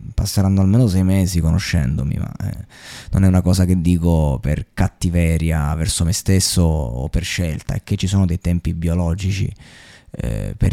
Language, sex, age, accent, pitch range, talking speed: Italian, male, 20-39, native, 85-100 Hz, 170 wpm